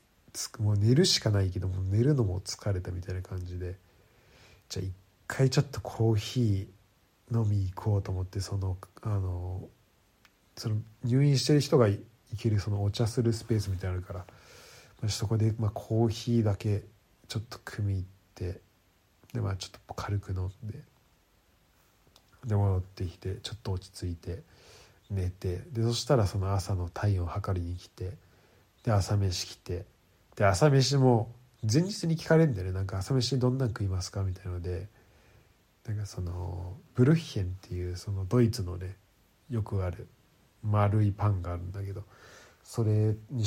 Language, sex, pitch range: Japanese, male, 95-115 Hz